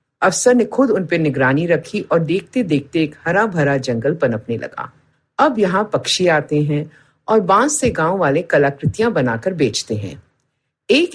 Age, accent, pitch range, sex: 50-69, native, 140-215 Hz, female